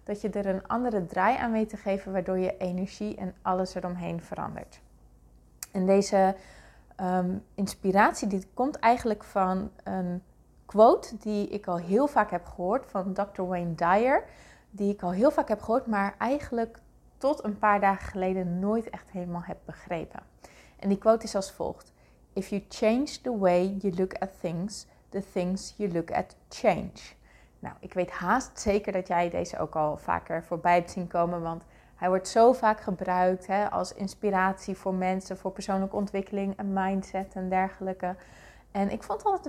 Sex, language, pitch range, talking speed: female, Dutch, 185-215 Hz, 175 wpm